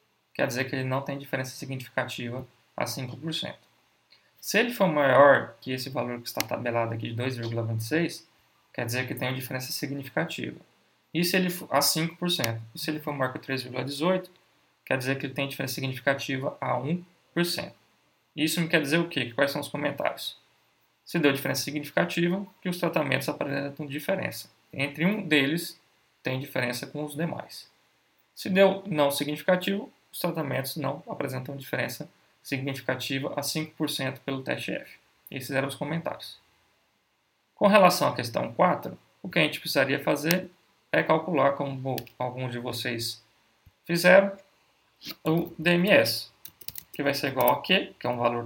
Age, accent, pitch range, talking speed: 20-39, Brazilian, 130-165 Hz, 155 wpm